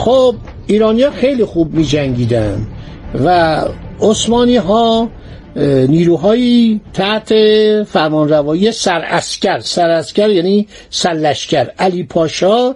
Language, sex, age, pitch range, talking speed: Persian, male, 60-79, 165-220 Hz, 95 wpm